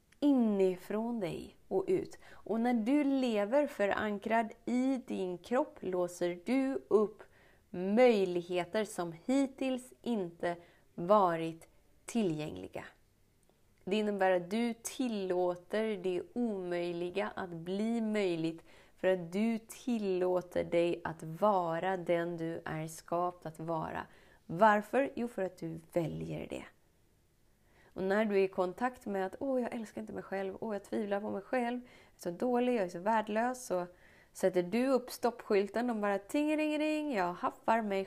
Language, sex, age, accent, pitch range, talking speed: Swedish, female, 30-49, native, 180-240 Hz, 145 wpm